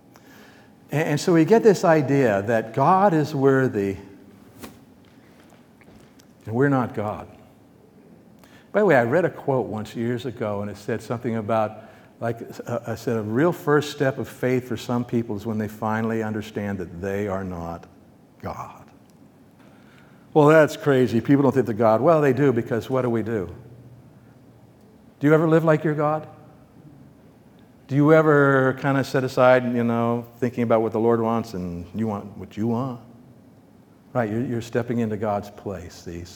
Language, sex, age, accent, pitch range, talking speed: English, male, 60-79, American, 115-155 Hz, 170 wpm